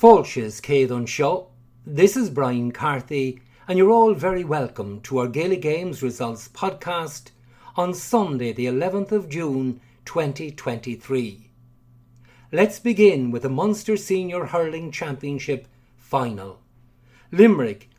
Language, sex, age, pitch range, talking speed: English, male, 50-69, 120-185 Hz, 105 wpm